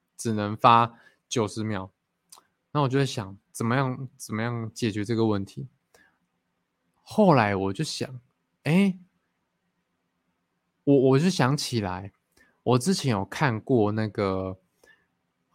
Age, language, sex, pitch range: 20-39, Chinese, male, 105-140 Hz